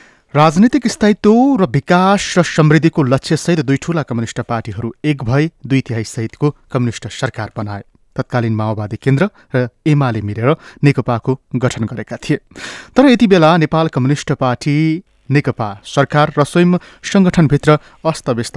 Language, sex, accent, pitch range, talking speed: English, male, Indian, 120-155 Hz, 135 wpm